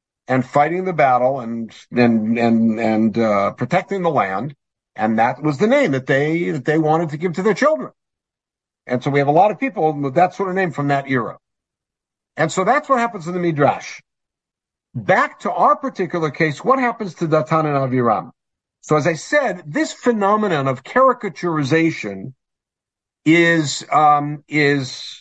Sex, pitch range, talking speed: male, 145-190 Hz, 175 wpm